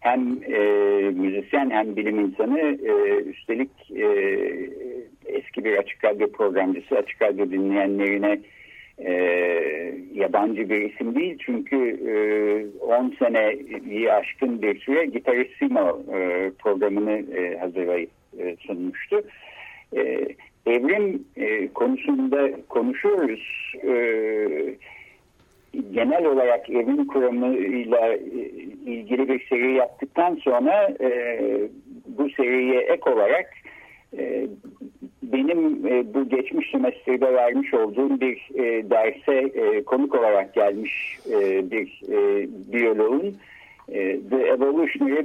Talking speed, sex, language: 105 wpm, male, Turkish